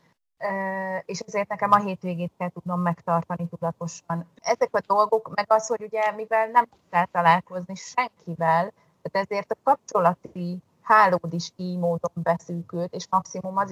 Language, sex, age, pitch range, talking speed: Hungarian, female, 30-49, 170-200 Hz, 145 wpm